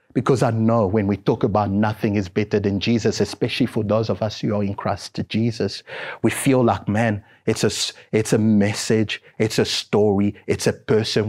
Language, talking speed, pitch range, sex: English, 190 wpm, 95-110 Hz, male